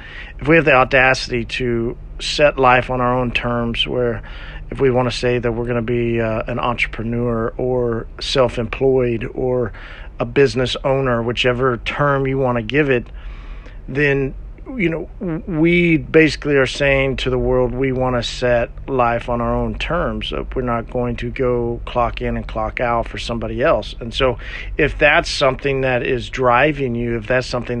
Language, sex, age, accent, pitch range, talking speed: English, male, 50-69, American, 115-130 Hz, 180 wpm